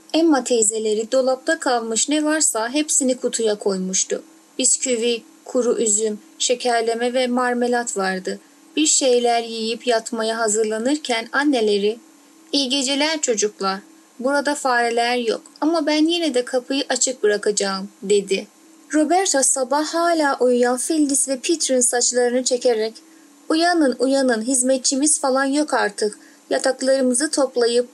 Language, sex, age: Persian, female, 30-49